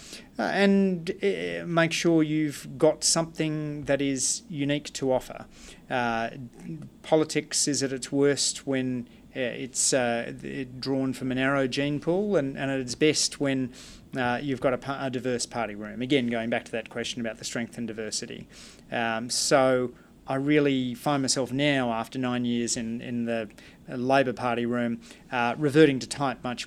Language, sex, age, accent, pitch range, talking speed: English, male, 30-49, Australian, 120-140 Hz, 170 wpm